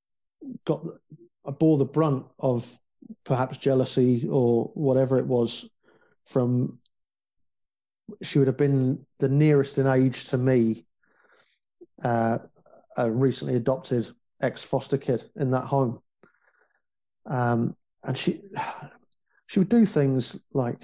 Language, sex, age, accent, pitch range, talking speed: English, male, 40-59, British, 125-150 Hz, 120 wpm